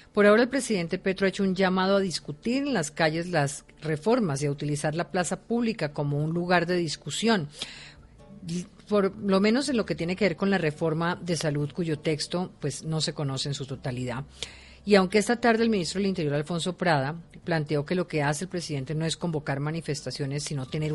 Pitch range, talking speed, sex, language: 145-180 Hz, 210 wpm, female, Spanish